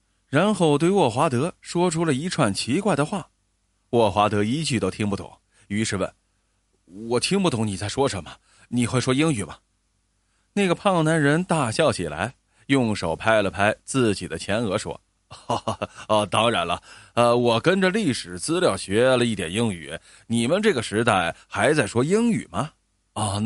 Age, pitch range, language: 20-39, 95-155 Hz, Chinese